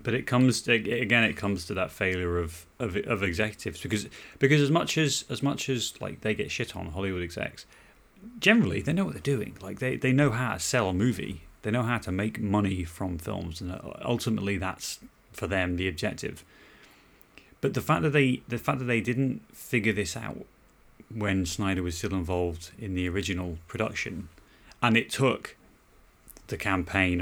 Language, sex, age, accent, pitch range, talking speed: English, male, 30-49, British, 90-125 Hz, 190 wpm